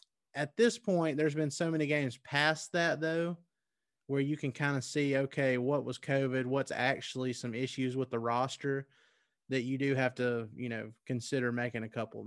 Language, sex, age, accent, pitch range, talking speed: English, male, 30-49, American, 125-145 Hz, 190 wpm